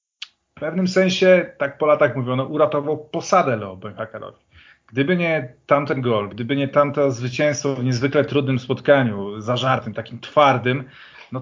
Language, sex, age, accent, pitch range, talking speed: Polish, male, 30-49, native, 115-150 Hz, 140 wpm